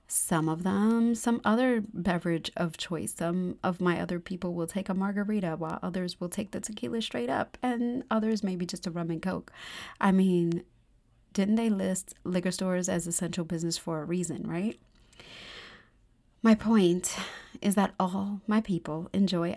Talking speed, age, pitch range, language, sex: 170 wpm, 30-49, 170-210 Hz, English, female